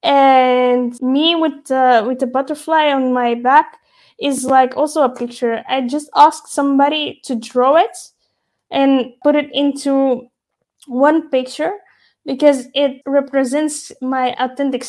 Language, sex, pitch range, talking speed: English, female, 255-300 Hz, 135 wpm